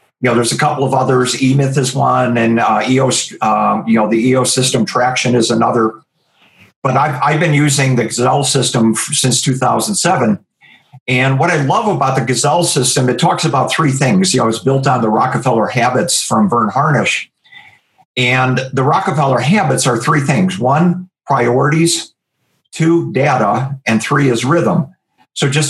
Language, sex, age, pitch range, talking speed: English, male, 50-69, 125-145 Hz, 170 wpm